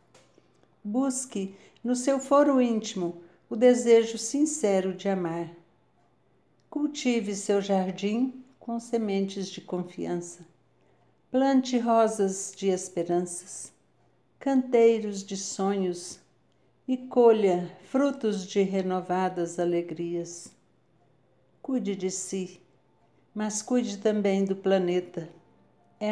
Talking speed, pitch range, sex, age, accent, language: 90 wpm, 180-225 Hz, female, 60-79, Brazilian, Portuguese